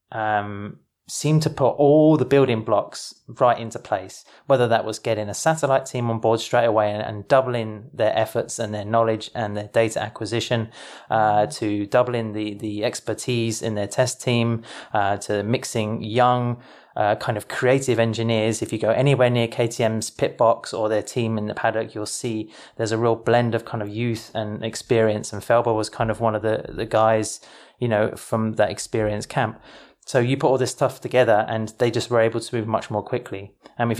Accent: British